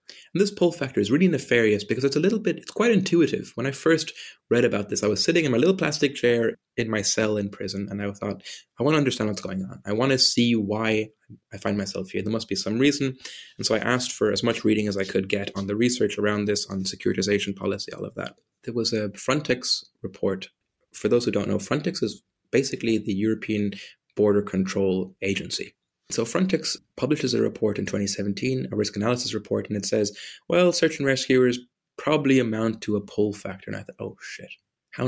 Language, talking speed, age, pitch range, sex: English, 220 wpm, 20-39, 100-130 Hz, male